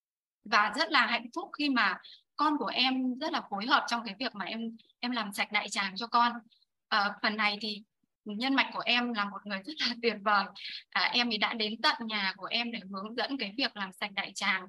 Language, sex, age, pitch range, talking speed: Vietnamese, female, 20-39, 205-260 Hz, 235 wpm